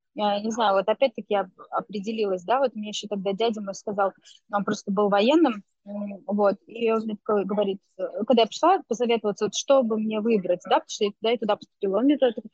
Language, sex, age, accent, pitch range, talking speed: Russian, female, 20-39, native, 200-235 Hz, 210 wpm